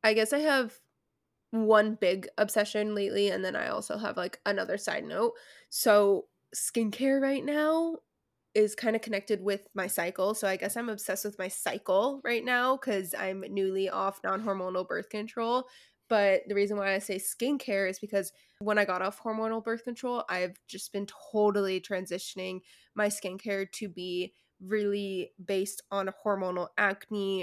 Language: English